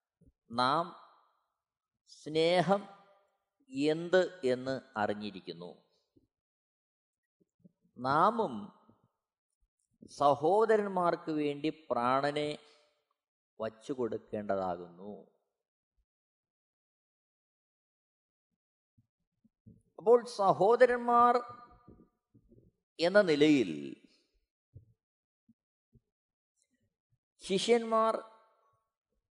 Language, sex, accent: Malayalam, male, native